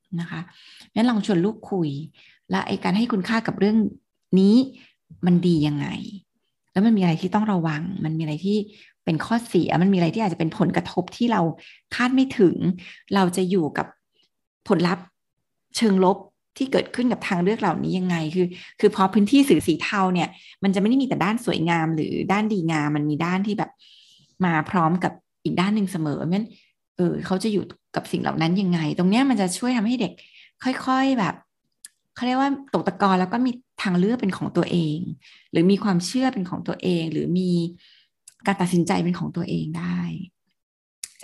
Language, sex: Thai, female